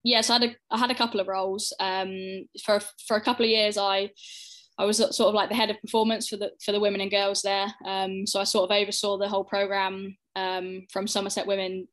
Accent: British